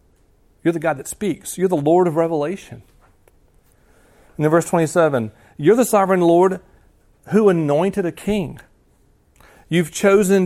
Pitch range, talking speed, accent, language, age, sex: 130-175 Hz, 145 wpm, American, English, 40-59, male